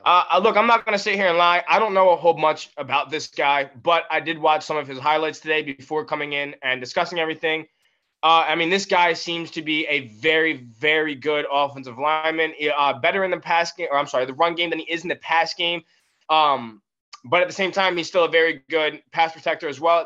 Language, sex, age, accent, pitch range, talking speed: English, male, 20-39, American, 150-175 Hz, 245 wpm